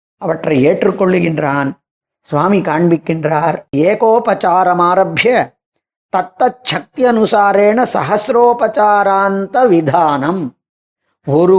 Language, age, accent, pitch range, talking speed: Tamil, 40-59, native, 175-230 Hz, 50 wpm